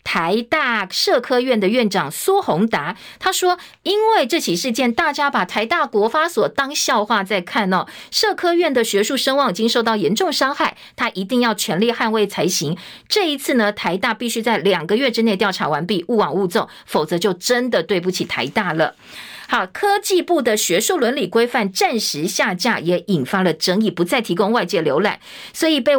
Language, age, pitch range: Chinese, 50-69, 200-280 Hz